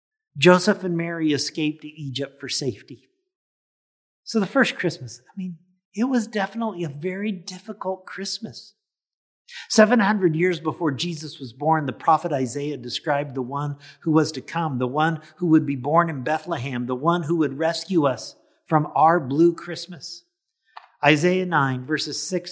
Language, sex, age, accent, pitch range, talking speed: English, male, 50-69, American, 155-200 Hz, 155 wpm